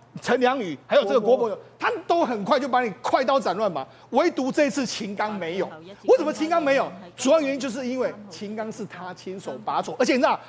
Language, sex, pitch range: Chinese, male, 200-295 Hz